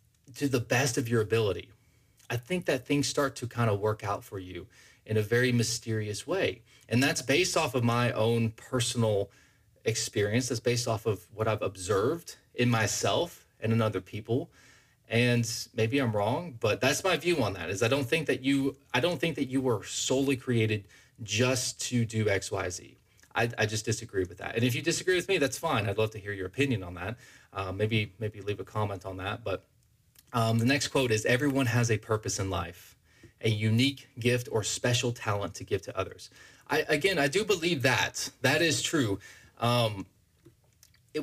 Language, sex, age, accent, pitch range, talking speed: English, male, 20-39, American, 110-135 Hz, 195 wpm